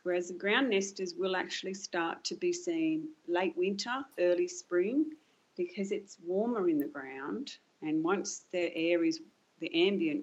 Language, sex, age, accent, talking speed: English, female, 40-59, Australian, 160 wpm